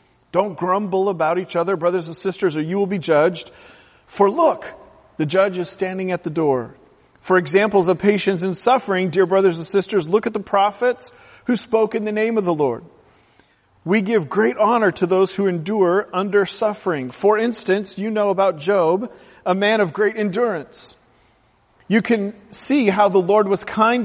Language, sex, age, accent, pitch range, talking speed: English, male, 40-59, American, 175-215 Hz, 180 wpm